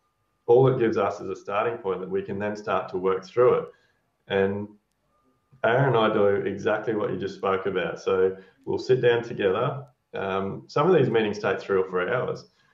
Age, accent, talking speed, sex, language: 20-39, Australian, 205 wpm, male, English